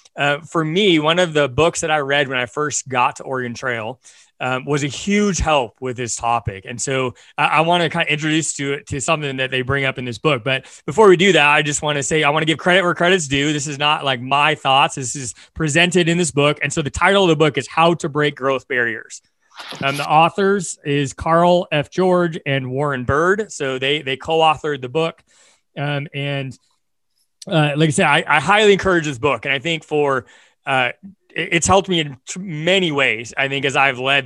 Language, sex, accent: English, male, American